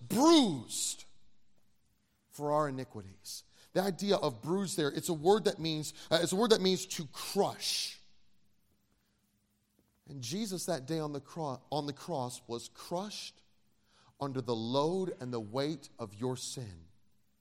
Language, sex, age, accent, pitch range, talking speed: English, male, 30-49, American, 140-220 Hz, 135 wpm